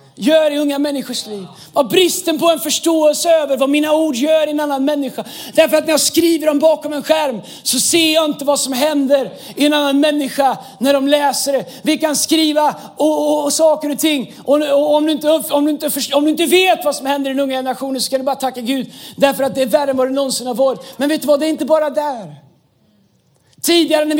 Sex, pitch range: male, 255-305 Hz